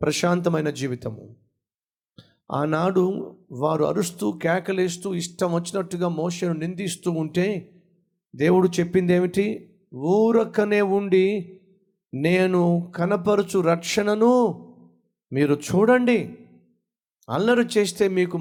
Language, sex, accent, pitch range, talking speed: Telugu, male, native, 165-195 Hz, 80 wpm